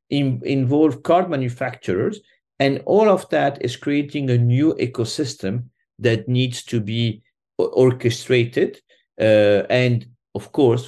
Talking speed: 115 wpm